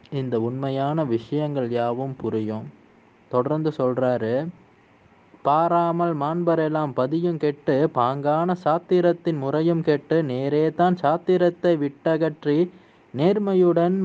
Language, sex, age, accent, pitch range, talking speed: Tamil, male, 20-39, native, 130-170 Hz, 80 wpm